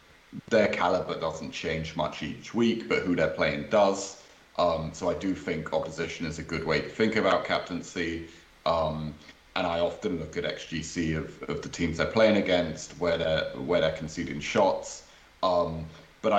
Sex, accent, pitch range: male, British, 80-90 Hz